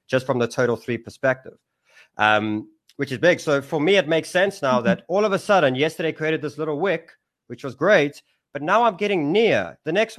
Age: 30-49